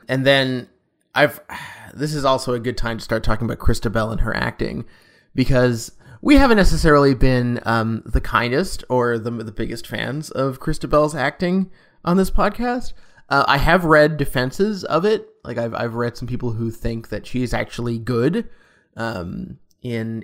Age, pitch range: 20-39, 120-150 Hz